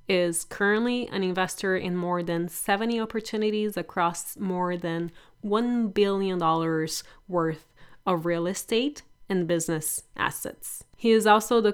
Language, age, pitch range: English, 30-49, 165-210 Hz